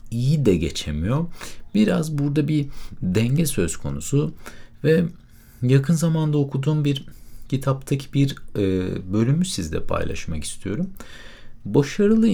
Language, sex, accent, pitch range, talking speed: Turkish, male, native, 100-160 Hz, 105 wpm